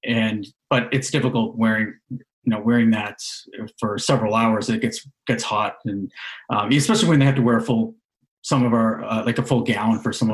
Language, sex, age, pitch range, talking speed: English, male, 30-49, 115-140 Hz, 210 wpm